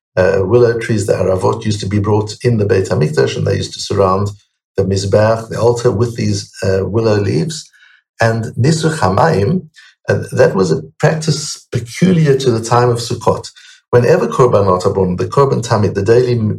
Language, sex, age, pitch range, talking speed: English, male, 60-79, 100-125 Hz, 175 wpm